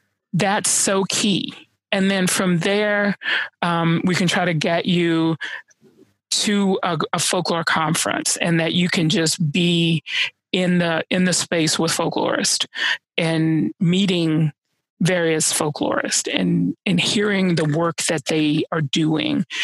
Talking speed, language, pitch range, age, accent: 140 wpm, English, 165-190 Hz, 30-49, American